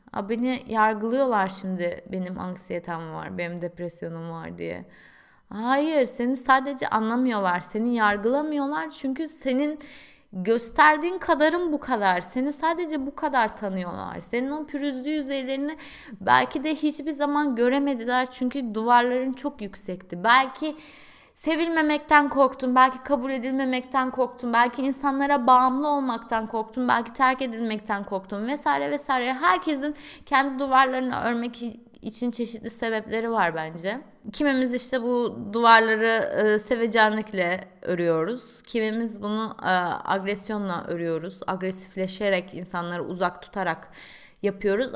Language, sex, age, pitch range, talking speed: Turkish, female, 20-39, 205-275 Hz, 115 wpm